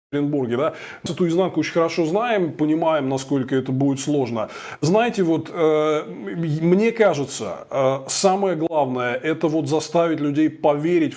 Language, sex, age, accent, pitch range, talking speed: Russian, male, 20-39, native, 135-170 Hz, 135 wpm